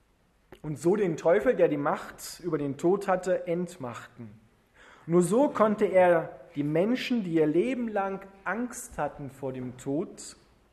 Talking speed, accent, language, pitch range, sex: 150 wpm, German, German, 140-200 Hz, male